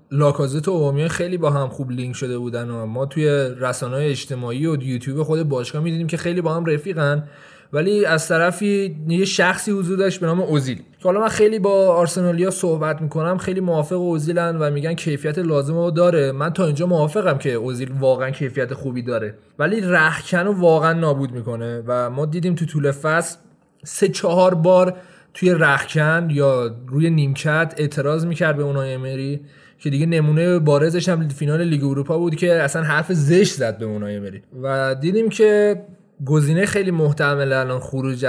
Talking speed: 170 wpm